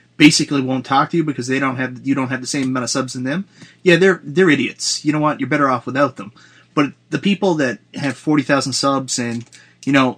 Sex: male